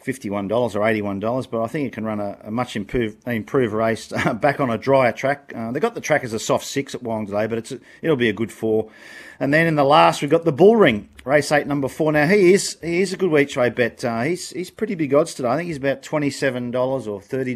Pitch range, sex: 125-155 Hz, male